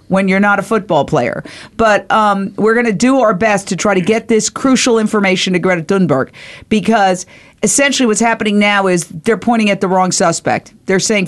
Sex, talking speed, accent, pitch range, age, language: female, 200 wpm, American, 185-230 Hz, 50-69, English